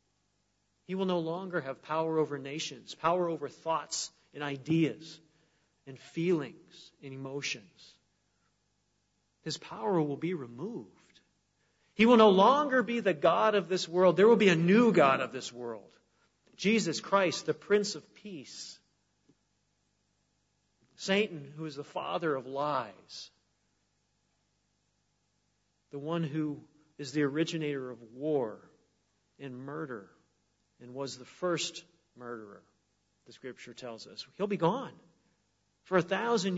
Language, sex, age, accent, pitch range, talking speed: English, male, 40-59, American, 135-180 Hz, 130 wpm